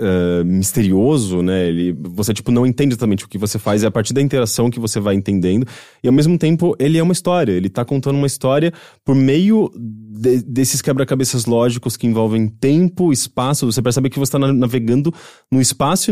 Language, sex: English, male